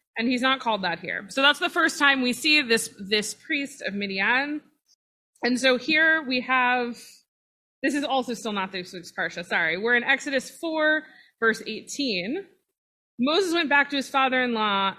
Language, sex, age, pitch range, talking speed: English, female, 20-39, 220-280 Hz, 170 wpm